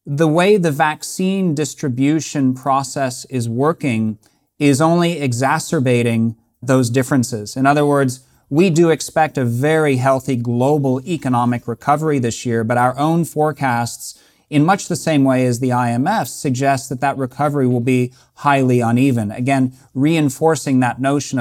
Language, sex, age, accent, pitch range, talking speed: English, male, 40-59, American, 125-145 Hz, 145 wpm